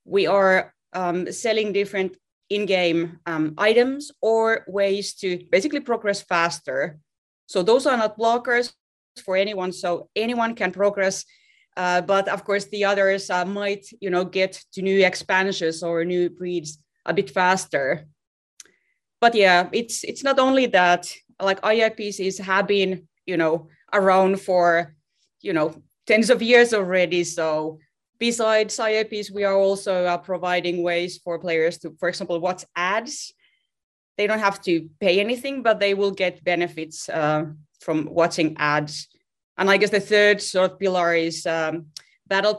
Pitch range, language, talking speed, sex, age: 170-205 Hz, English, 150 wpm, female, 30-49